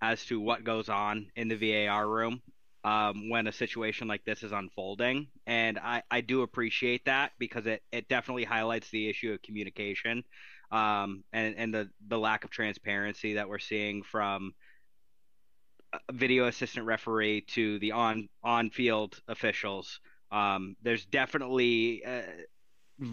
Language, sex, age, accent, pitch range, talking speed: English, male, 30-49, American, 105-120 Hz, 150 wpm